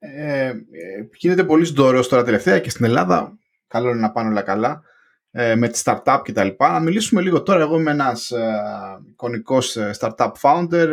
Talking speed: 155 wpm